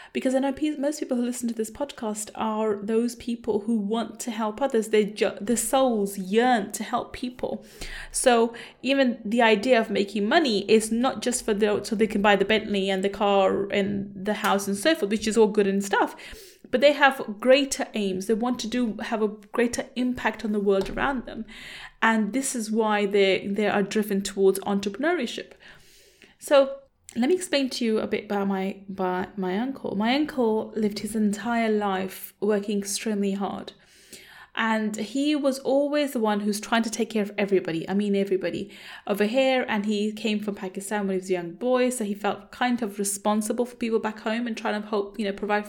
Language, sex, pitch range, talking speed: English, female, 200-245 Hz, 205 wpm